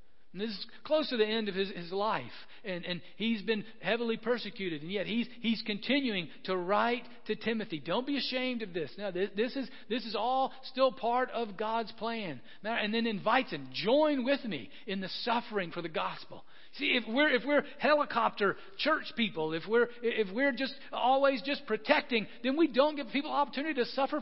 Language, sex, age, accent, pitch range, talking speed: English, male, 40-59, American, 185-255 Hz, 195 wpm